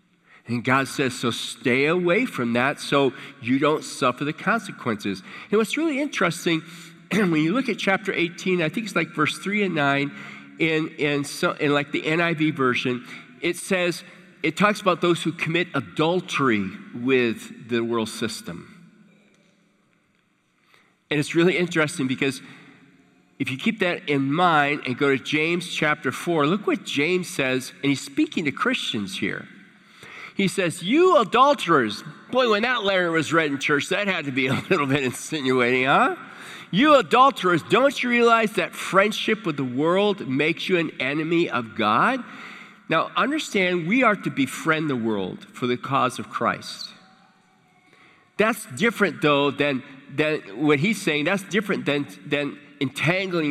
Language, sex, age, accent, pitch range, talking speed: English, male, 40-59, American, 135-190 Hz, 160 wpm